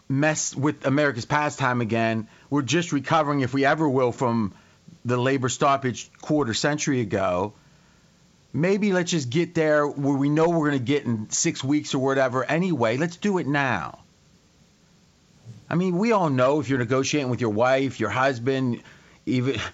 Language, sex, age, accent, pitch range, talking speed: English, male, 30-49, American, 125-160 Hz, 165 wpm